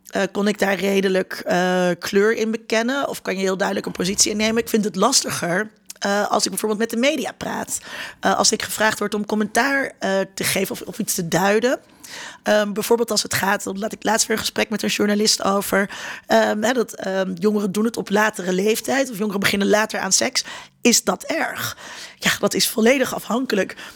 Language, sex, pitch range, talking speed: Dutch, female, 200-230 Hz, 205 wpm